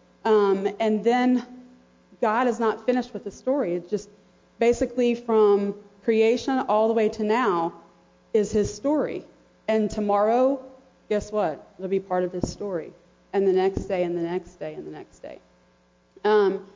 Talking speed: 165 wpm